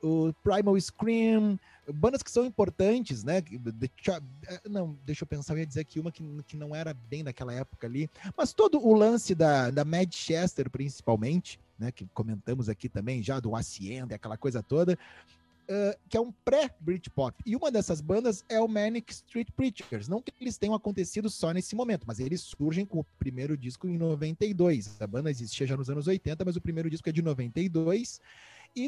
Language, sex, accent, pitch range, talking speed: Portuguese, male, Brazilian, 130-185 Hz, 195 wpm